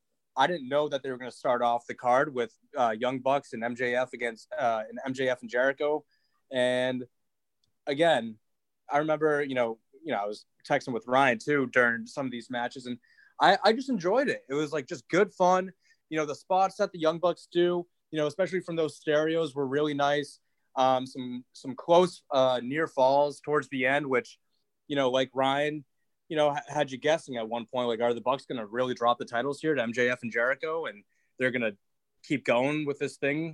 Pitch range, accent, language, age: 125-155 Hz, American, English, 20-39